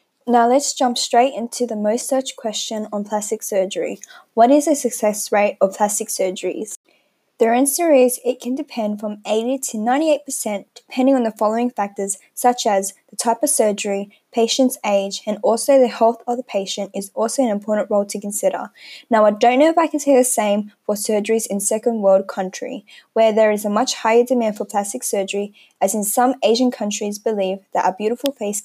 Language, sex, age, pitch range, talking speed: English, female, 10-29, 210-260 Hz, 195 wpm